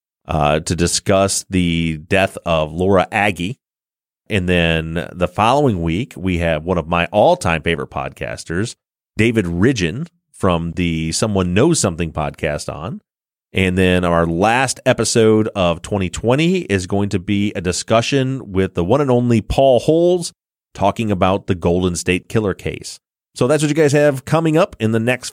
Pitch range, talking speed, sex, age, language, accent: 90-115 Hz, 160 wpm, male, 30-49, English, American